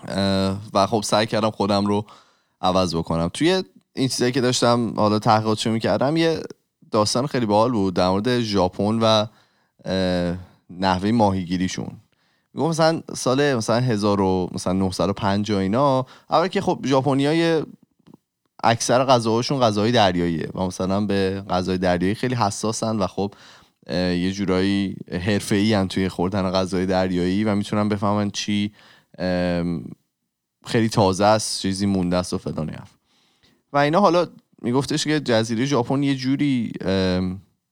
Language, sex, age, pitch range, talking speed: Persian, male, 20-39, 95-120 Hz, 130 wpm